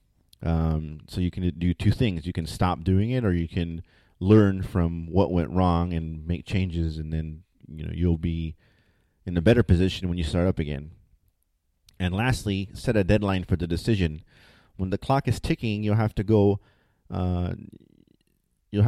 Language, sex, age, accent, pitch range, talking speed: English, male, 30-49, American, 90-115 Hz, 180 wpm